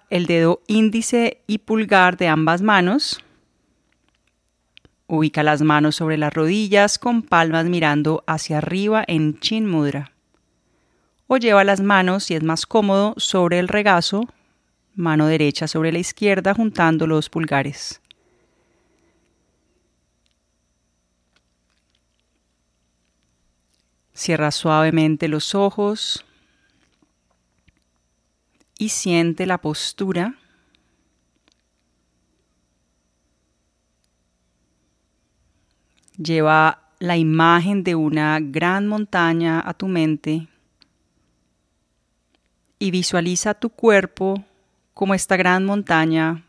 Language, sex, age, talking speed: Spanish, female, 30-49, 85 wpm